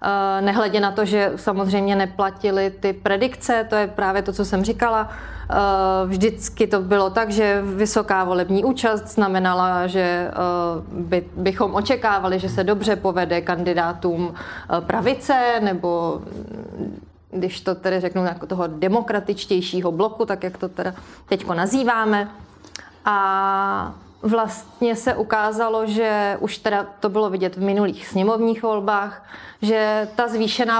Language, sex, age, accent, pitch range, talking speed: Czech, female, 30-49, native, 185-220 Hz, 125 wpm